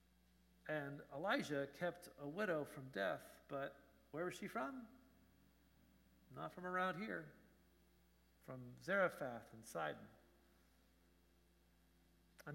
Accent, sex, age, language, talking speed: American, male, 50-69, English, 100 wpm